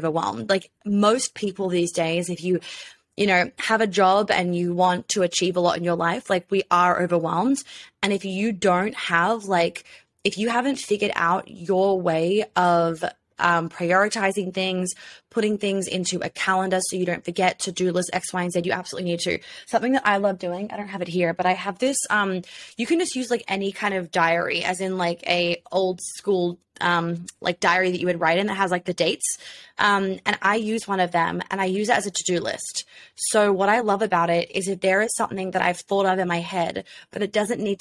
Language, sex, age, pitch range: English, female, 20-39, 175-205 Hz